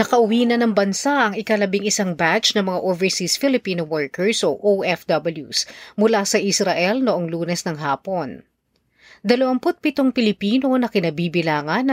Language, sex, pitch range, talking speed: Filipino, female, 175-235 Hz, 130 wpm